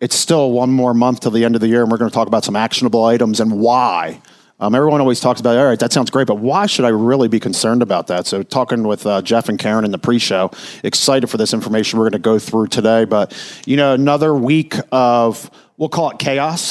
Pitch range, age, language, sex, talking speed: 120-145 Hz, 40-59, English, male, 250 wpm